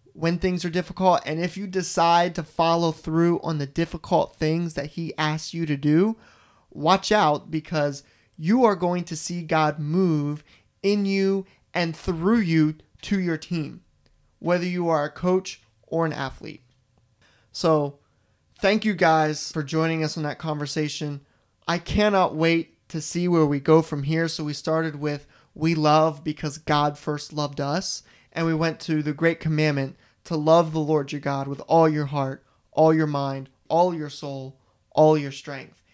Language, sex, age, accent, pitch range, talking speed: English, male, 30-49, American, 145-170 Hz, 175 wpm